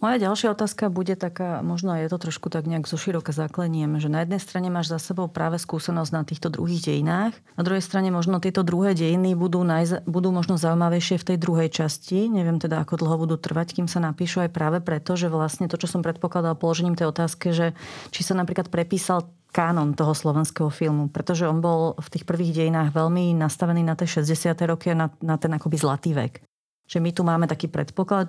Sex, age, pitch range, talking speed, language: female, 30-49, 160-180 Hz, 210 wpm, Slovak